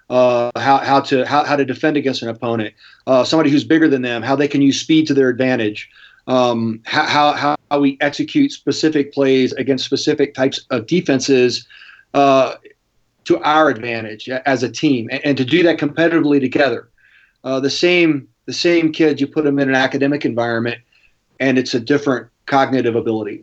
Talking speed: 180 wpm